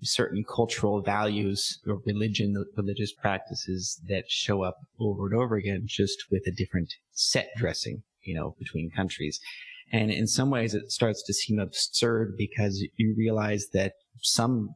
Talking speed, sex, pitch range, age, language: 155 wpm, male, 95-115 Hz, 30-49, English